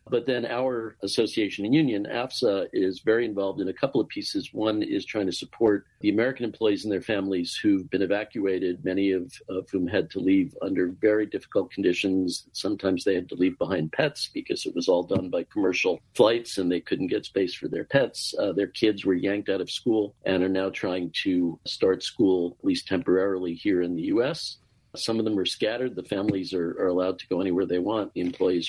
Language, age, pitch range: English, 50-69, 95-125 Hz